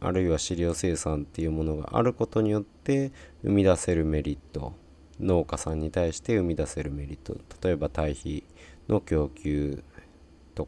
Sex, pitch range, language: male, 75-90 Hz, Japanese